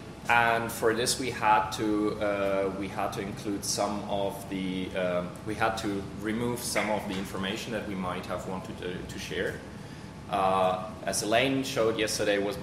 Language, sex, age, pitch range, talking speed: English, male, 20-39, 95-110 Hz, 175 wpm